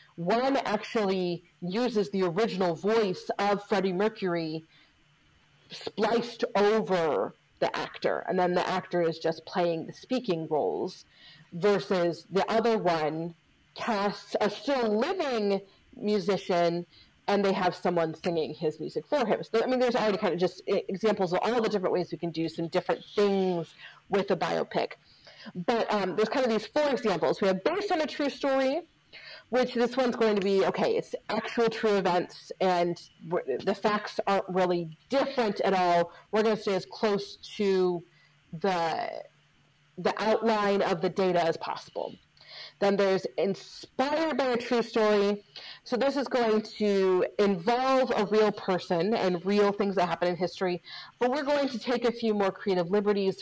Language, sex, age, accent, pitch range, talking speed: English, female, 30-49, American, 180-225 Hz, 165 wpm